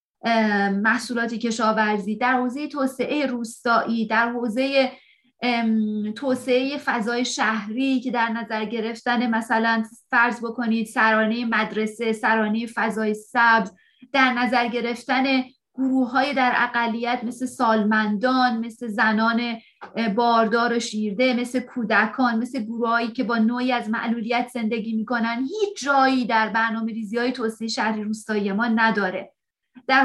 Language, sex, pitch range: English, female, 225-255 Hz